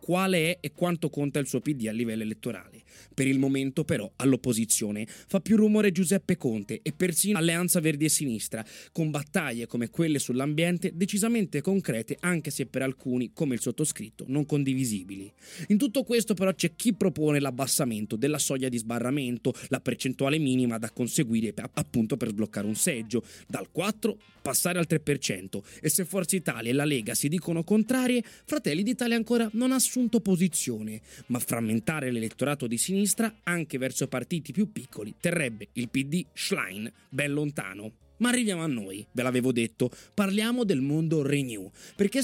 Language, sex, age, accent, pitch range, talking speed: Italian, male, 20-39, native, 125-195 Hz, 165 wpm